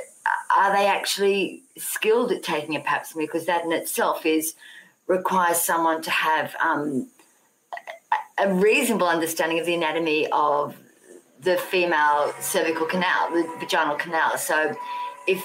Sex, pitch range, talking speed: female, 165-215 Hz, 135 wpm